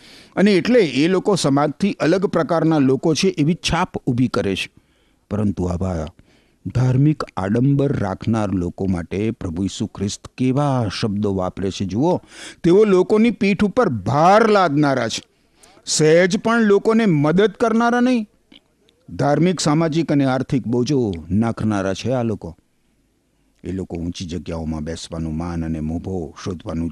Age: 50-69